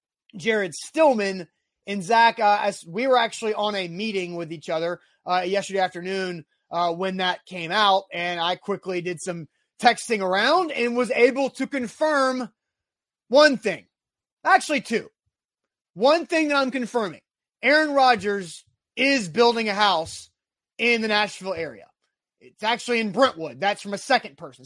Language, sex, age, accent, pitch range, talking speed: English, male, 30-49, American, 185-240 Hz, 155 wpm